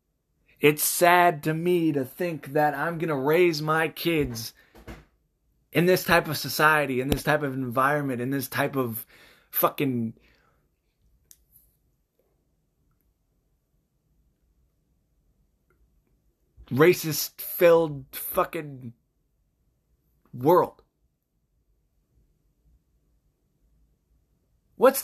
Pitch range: 135-190 Hz